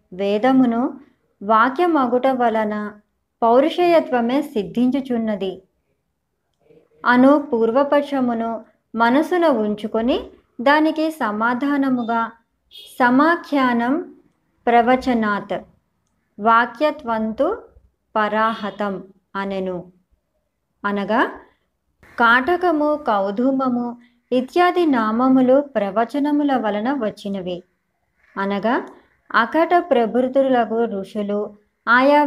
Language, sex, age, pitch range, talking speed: Telugu, male, 20-39, 210-275 Hz, 55 wpm